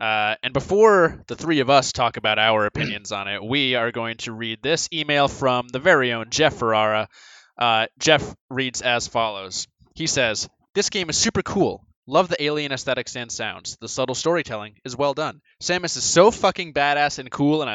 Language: English